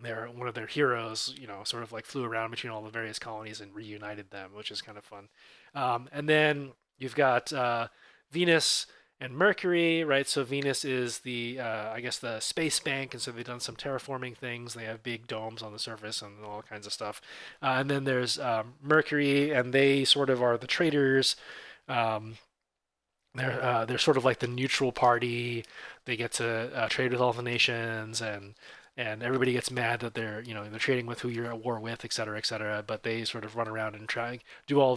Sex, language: male, English